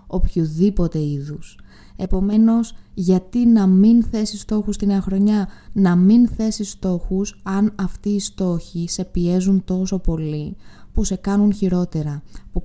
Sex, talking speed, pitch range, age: female, 130 wpm, 165-200 Hz, 20-39